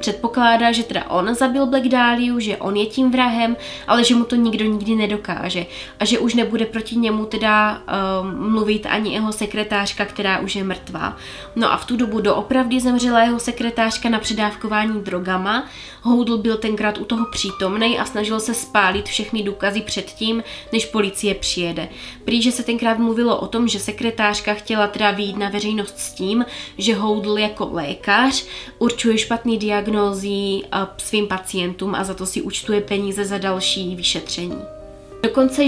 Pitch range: 200-235 Hz